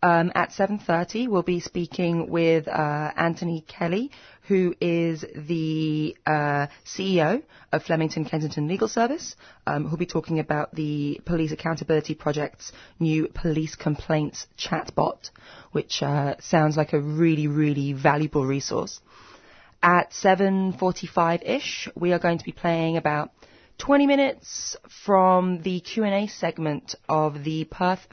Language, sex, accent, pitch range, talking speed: English, female, British, 145-170 Hz, 130 wpm